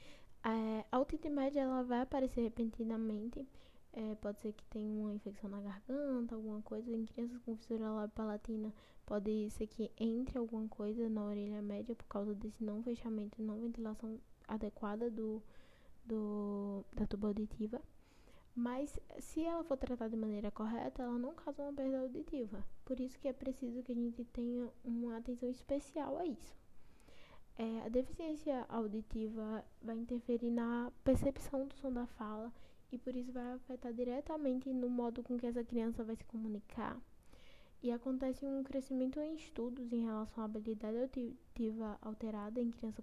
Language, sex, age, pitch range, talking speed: Polish, female, 10-29, 220-255 Hz, 160 wpm